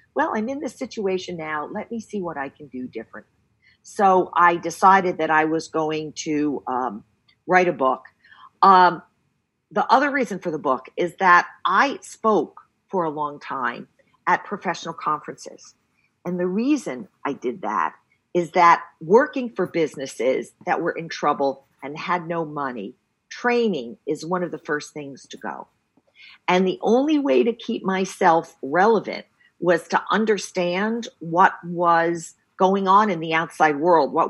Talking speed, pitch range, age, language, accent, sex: 160 wpm, 155-205 Hz, 50-69, English, American, female